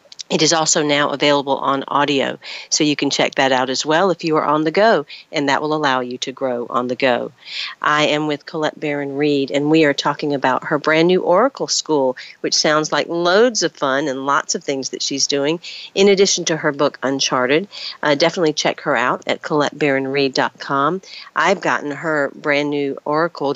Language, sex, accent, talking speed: English, female, American, 200 wpm